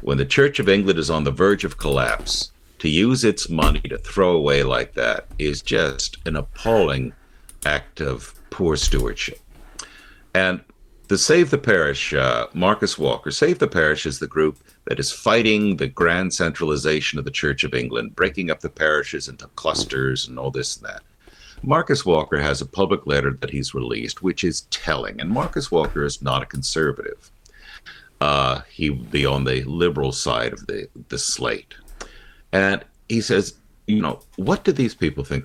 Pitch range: 70-90 Hz